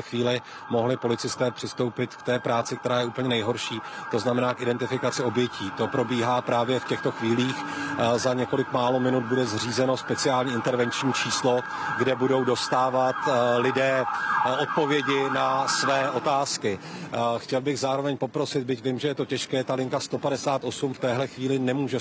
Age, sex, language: 40-59, male, Czech